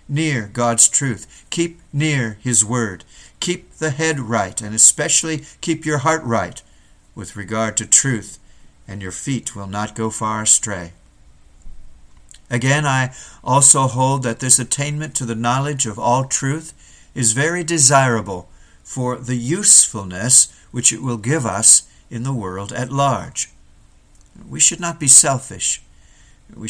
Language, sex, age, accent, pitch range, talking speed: English, male, 50-69, American, 105-140 Hz, 145 wpm